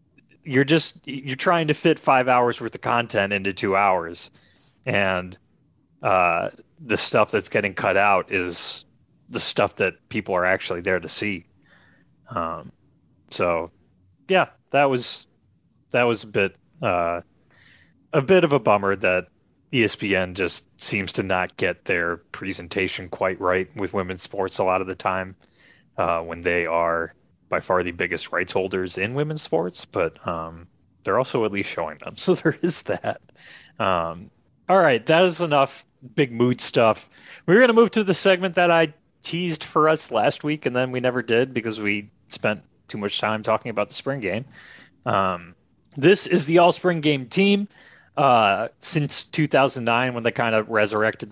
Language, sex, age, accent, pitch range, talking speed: English, male, 30-49, American, 95-150 Hz, 170 wpm